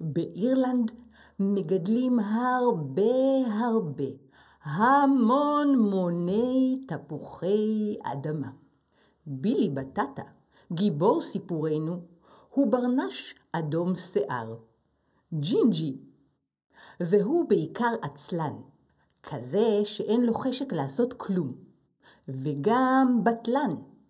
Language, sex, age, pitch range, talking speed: Hebrew, female, 50-69, 160-250 Hz, 70 wpm